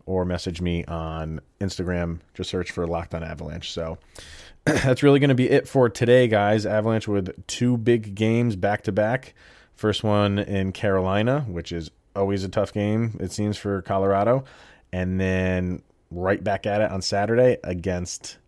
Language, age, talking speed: English, 30-49, 160 wpm